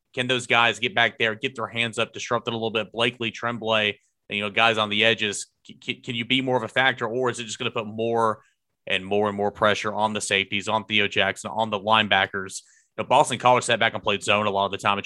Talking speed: 275 wpm